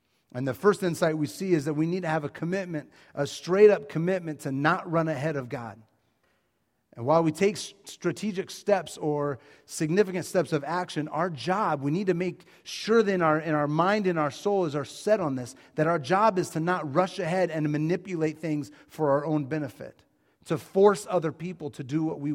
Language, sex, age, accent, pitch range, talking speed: English, male, 30-49, American, 130-165 Hz, 205 wpm